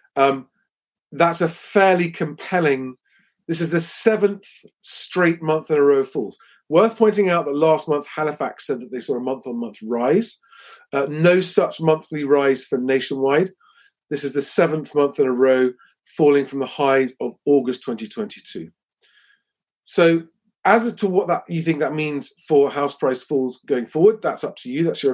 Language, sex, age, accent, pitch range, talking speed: English, male, 40-59, British, 140-185 Hz, 175 wpm